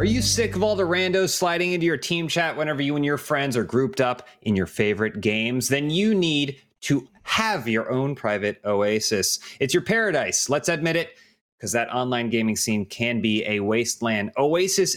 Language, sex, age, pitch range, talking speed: English, male, 30-49, 115-150 Hz, 195 wpm